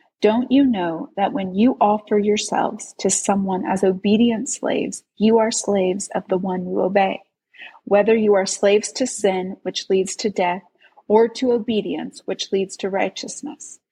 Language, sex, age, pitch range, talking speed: English, female, 30-49, 190-245 Hz, 165 wpm